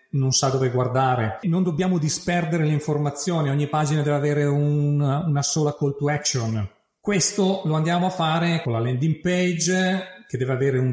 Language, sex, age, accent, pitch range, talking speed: Italian, male, 40-59, native, 130-180 Hz, 175 wpm